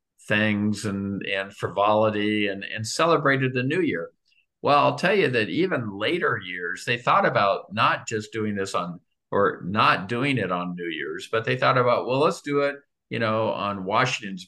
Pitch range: 95-120 Hz